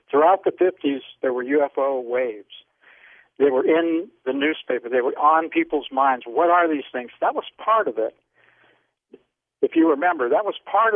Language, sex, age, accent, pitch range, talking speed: English, male, 60-79, American, 125-180 Hz, 175 wpm